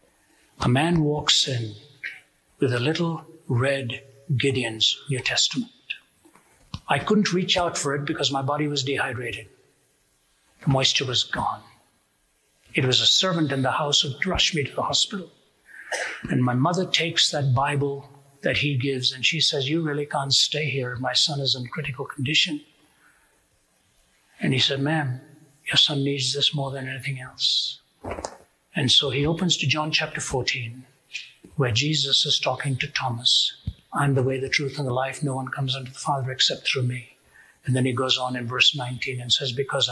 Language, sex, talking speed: English, male, 175 wpm